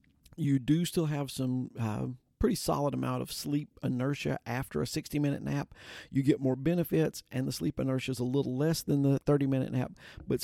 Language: English